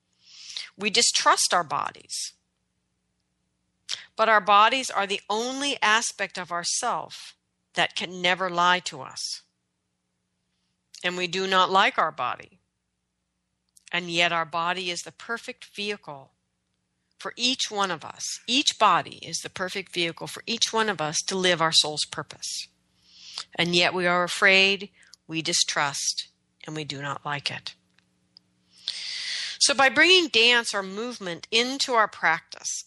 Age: 50-69